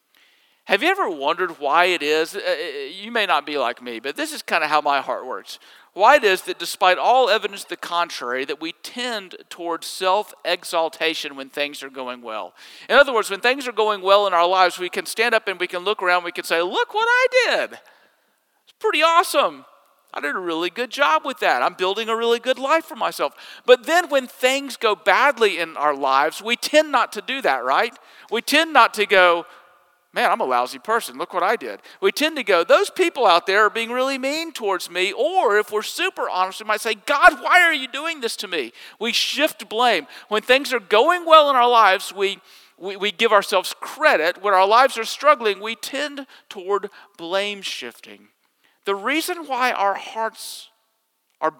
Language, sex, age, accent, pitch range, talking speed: English, male, 50-69, American, 180-280 Hz, 215 wpm